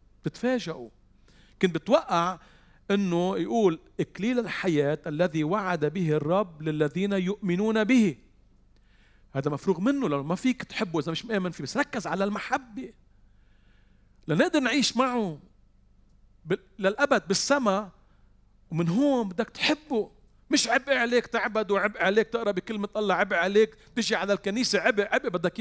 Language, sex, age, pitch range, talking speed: Arabic, male, 40-59, 130-210 Hz, 130 wpm